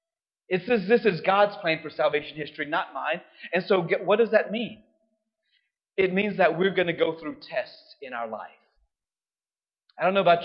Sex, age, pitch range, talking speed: male, 30-49, 180-250 Hz, 190 wpm